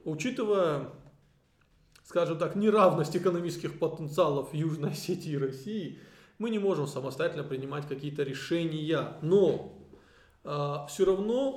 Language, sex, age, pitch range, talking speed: Russian, male, 20-39, 140-185 Hz, 110 wpm